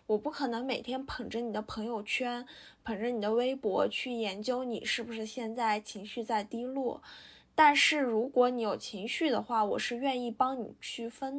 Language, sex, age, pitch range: Chinese, female, 10-29, 220-275 Hz